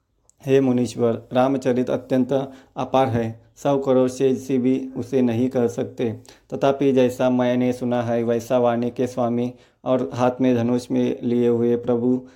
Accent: native